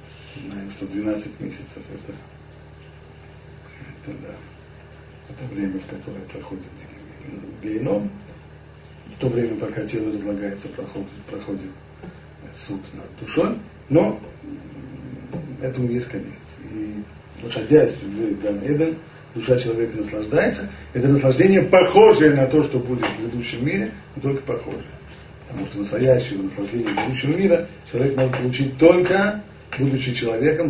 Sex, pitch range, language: male, 105-145 Hz, Russian